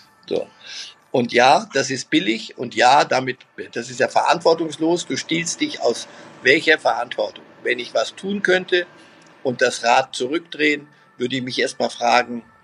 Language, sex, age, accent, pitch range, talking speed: German, male, 50-69, German, 125-165 Hz, 155 wpm